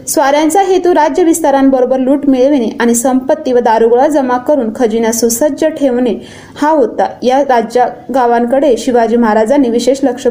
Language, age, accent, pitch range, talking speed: Marathi, 20-39, native, 240-290 Hz, 140 wpm